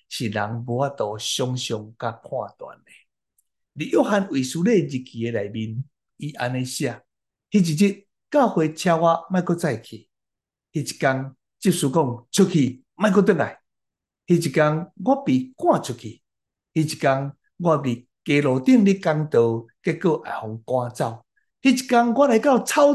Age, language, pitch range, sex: 60-79, Chinese, 125-195 Hz, male